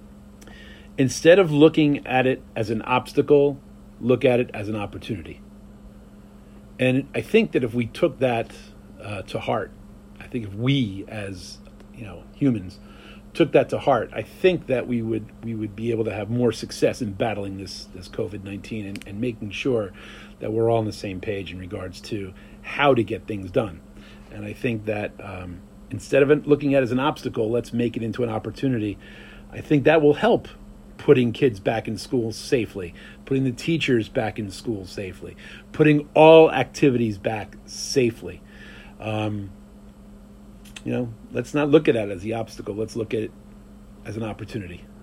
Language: English